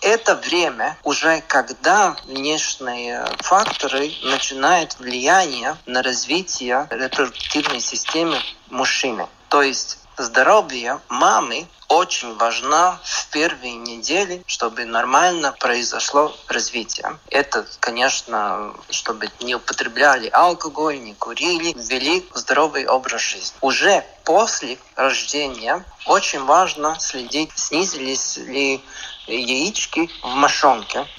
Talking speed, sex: 95 wpm, male